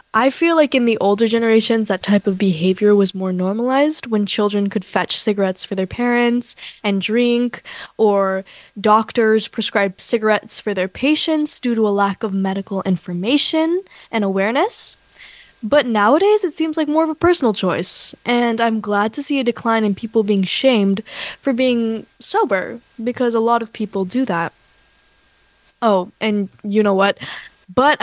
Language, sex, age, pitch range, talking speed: English, female, 10-29, 200-260 Hz, 165 wpm